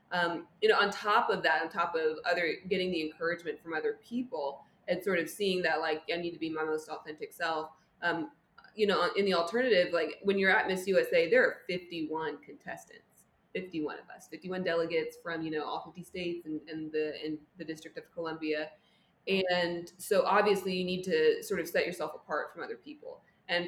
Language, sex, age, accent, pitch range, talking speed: English, female, 20-39, American, 165-215 Hz, 200 wpm